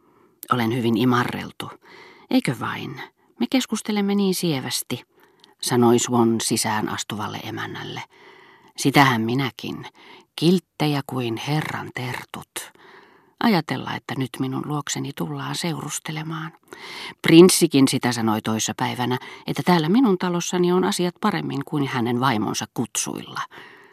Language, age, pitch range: Finnish, 40-59, 125-175 Hz